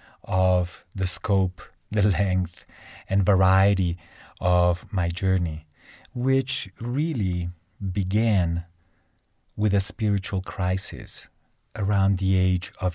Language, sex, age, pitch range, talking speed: English, male, 40-59, 90-100 Hz, 95 wpm